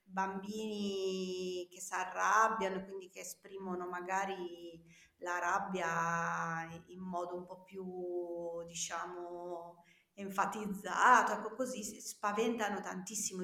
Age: 30-49